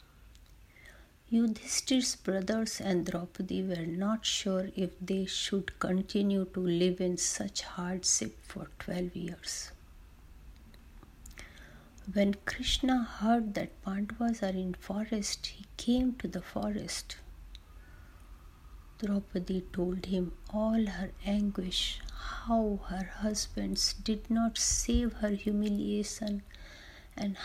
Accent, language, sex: native, Hindi, female